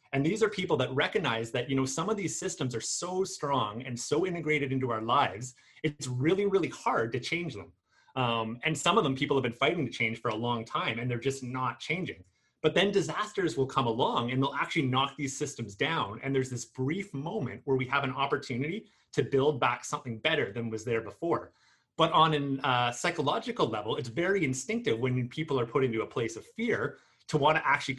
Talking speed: 220 wpm